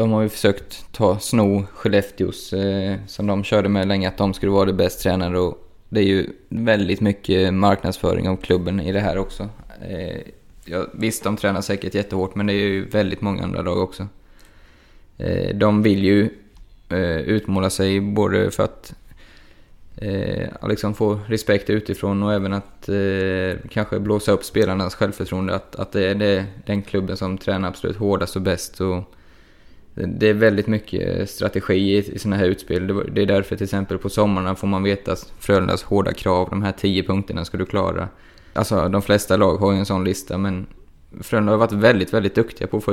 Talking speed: 175 wpm